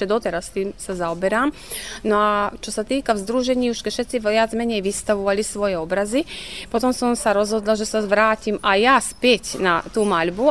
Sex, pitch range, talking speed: female, 195-225 Hz, 190 wpm